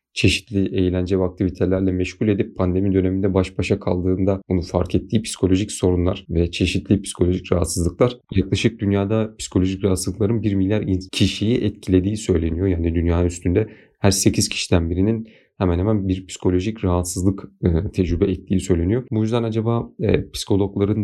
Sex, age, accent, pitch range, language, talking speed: male, 40-59, native, 90-105 Hz, Turkish, 135 wpm